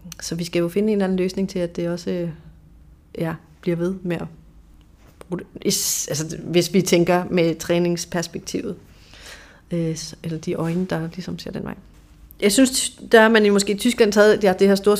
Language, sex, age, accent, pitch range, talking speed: Danish, female, 30-49, native, 170-195 Hz, 185 wpm